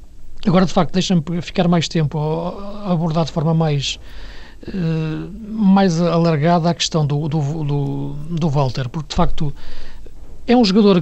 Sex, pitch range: male, 145-175 Hz